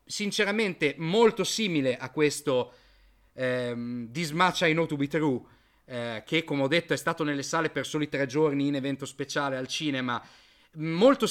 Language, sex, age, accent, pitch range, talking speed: Italian, male, 30-49, native, 145-210 Hz, 165 wpm